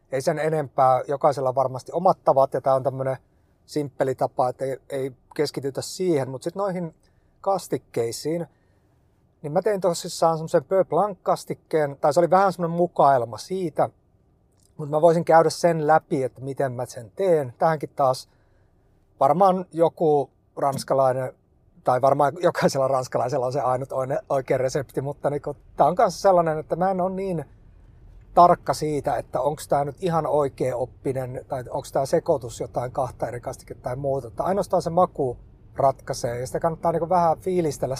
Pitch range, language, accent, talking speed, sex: 130-170 Hz, Finnish, native, 160 wpm, male